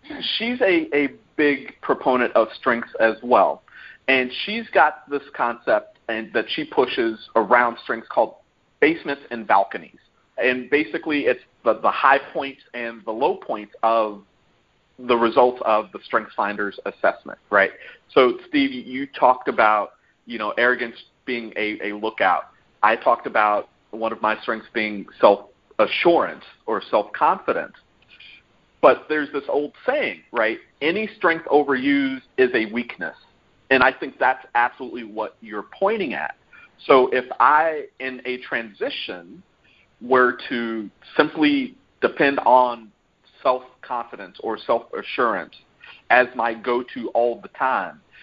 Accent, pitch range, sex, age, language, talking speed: American, 115-145 Hz, male, 40-59, English, 135 wpm